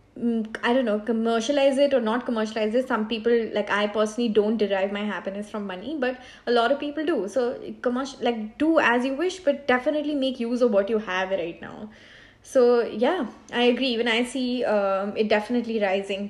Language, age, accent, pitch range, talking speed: English, 20-39, Indian, 215-265 Hz, 200 wpm